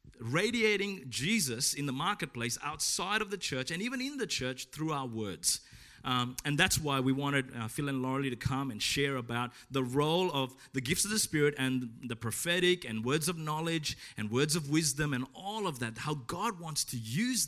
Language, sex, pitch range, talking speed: English, male, 130-185 Hz, 205 wpm